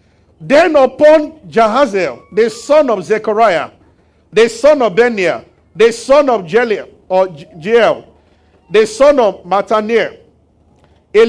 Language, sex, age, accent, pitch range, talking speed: English, male, 50-69, Nigerian, 225-285 Hz, 120 wpm